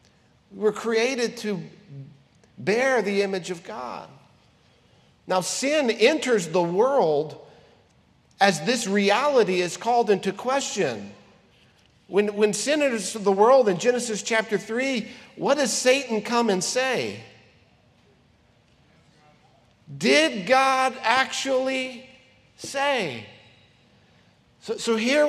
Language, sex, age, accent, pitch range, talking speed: English, male, 50-69, American, 195-250 Hz, 100 wpm